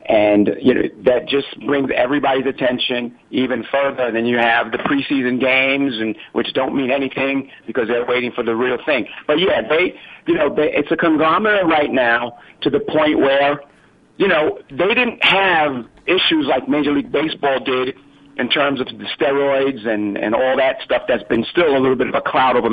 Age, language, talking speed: 50-69, English, 195 wpm